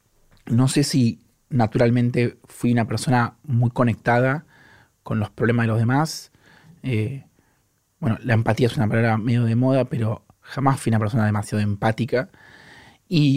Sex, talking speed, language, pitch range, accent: male, 150 wpm, Spanish, 115-140 Hz, Argentinian